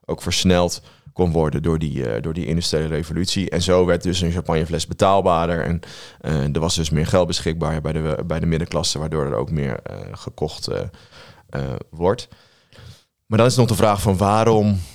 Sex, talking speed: male, 190 wpm